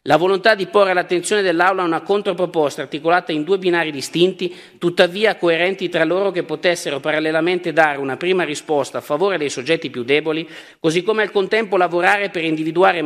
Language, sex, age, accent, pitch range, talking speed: Italian, male, 50-69, native, 155-185 Hz, 170 wpm